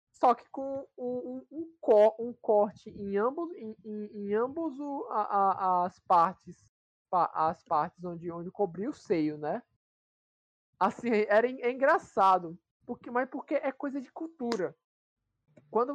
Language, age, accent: Portuguese, 20-39, Brazilian